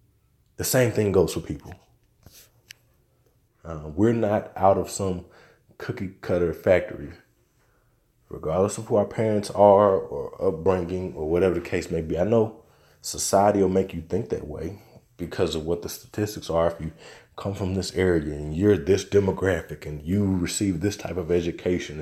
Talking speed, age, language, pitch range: 165 wpm, 20-39, English, 85-110 Hz